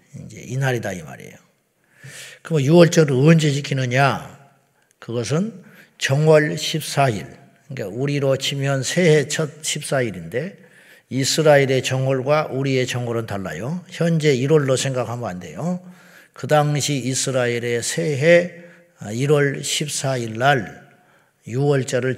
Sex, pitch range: male, 130-160 Hz